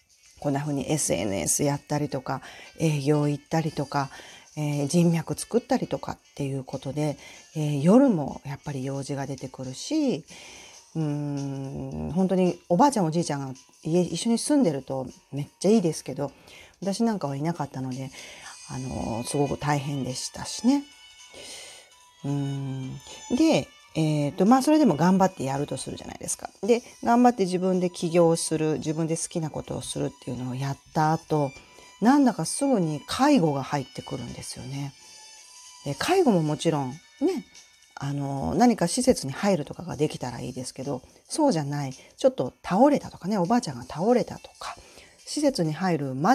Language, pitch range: Japanese, 140-195 Hz